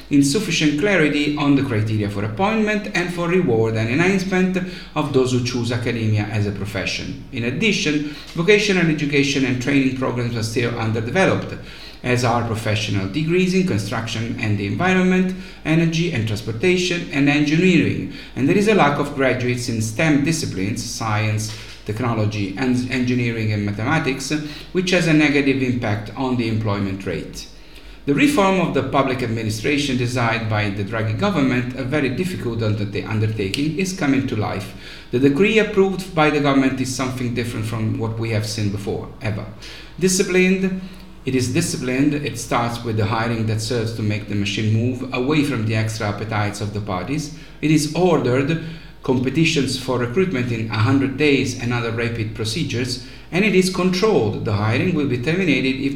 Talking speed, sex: 160 wpm, male